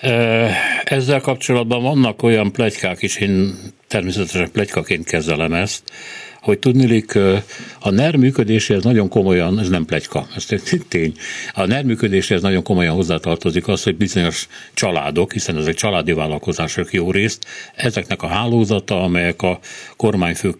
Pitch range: 90-115 Hz